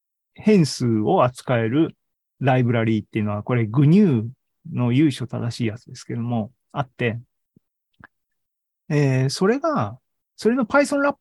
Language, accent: Japanese, native